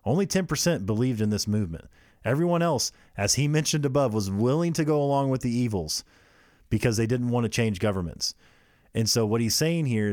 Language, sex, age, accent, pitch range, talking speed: English, male, 30-49, American, 105-135 Hz, 195 wpm